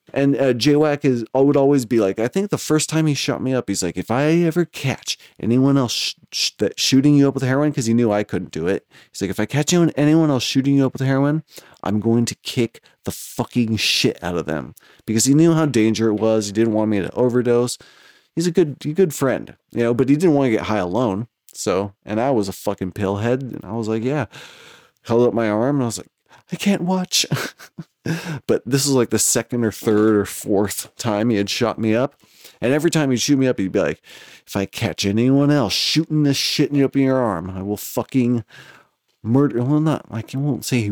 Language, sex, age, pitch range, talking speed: English, male, 30-49, 110-140 Hz, 245 wpm